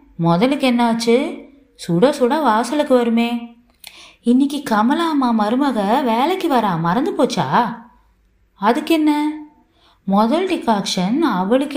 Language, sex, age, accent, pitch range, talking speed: Tamil, female, 20-39, native, 185-260 Hz, 95 wpm